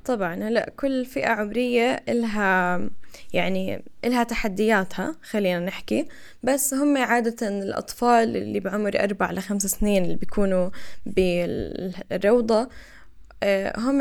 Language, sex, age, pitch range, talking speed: Arabic, female, 10-29, 200-255 Hz, 105 wpm